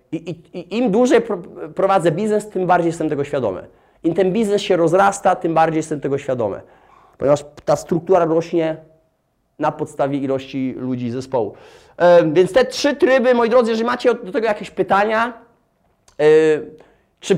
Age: 30-49